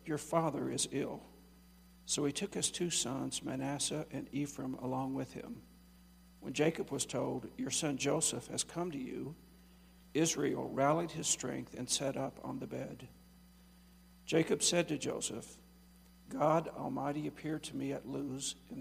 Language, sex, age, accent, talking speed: English, male, 60-79, American, 155 wpm